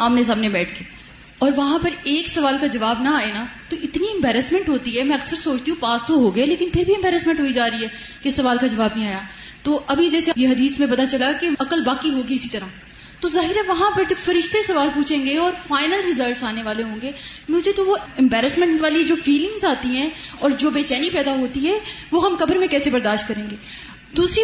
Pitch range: 250-335 Hz